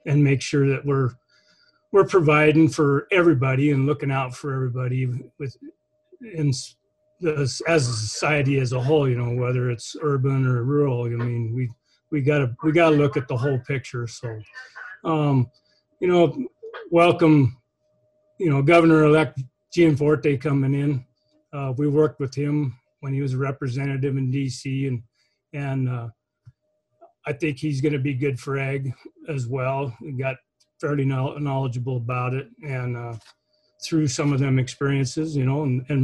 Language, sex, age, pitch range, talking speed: English, male, 40-59, 130-150 Hz, 165 wpm